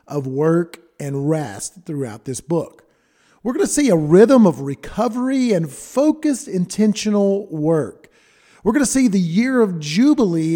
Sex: male